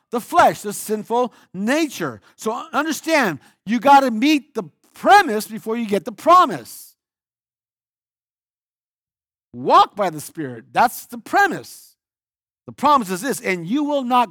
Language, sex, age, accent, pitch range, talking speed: English, male, 50-69, American, 145-230 Hz, 140 wpm